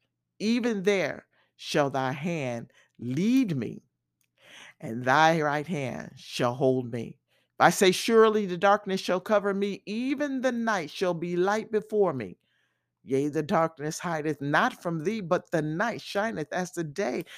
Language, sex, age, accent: English, male, 50-69, American